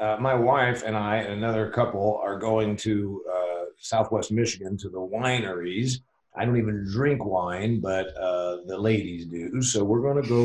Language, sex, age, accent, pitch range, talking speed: English, male, 50-69, American, 100-125 Hz, 185 wpm